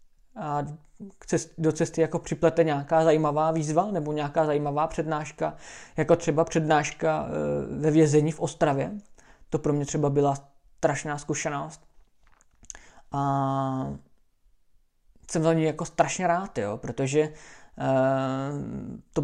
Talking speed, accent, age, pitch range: 110 wpm, native, 20-39, 140-165 Hz